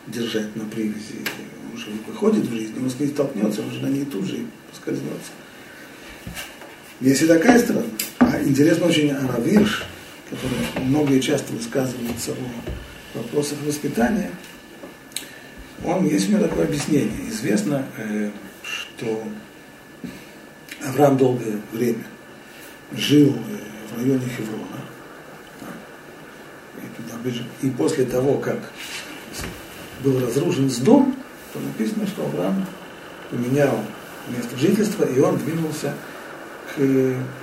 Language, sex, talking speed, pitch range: Russian, male, 105 wpm, 120-150 Hz